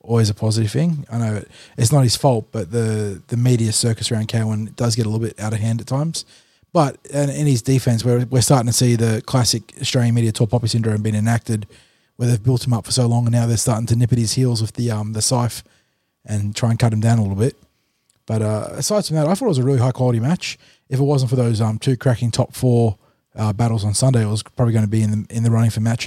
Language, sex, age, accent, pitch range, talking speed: English, male, 20-39, Australian, 110-125 Hz, 275 wpm